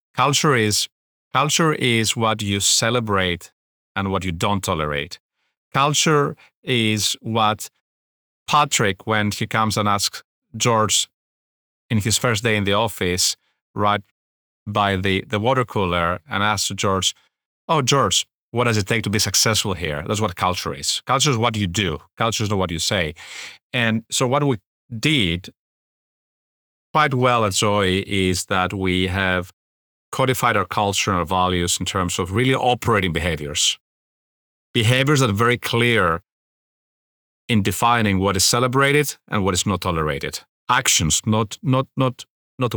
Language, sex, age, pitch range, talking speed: English, male, 40-59, 95-120 Hz, 150 wpm